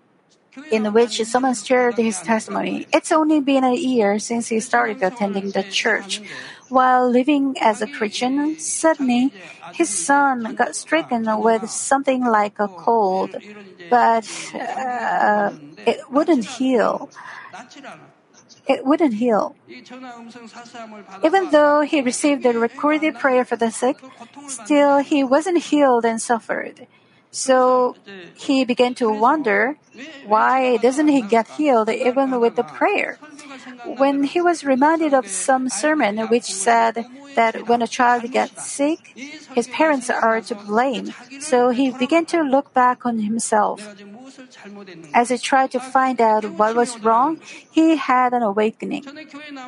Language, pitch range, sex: Korean, 230-280 Hz, female